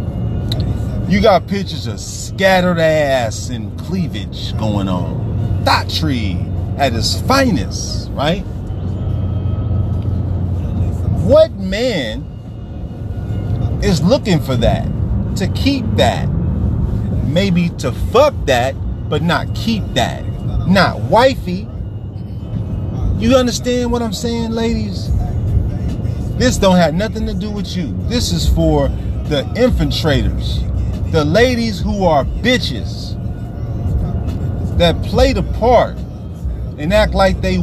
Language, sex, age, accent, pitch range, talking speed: English, male, 30-49, American, 95-110 Hz, 105 wpm